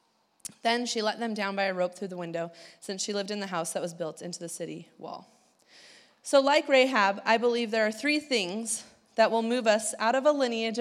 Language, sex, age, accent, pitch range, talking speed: English, female, 30-49, American, 205-255 Hz, 230 wpm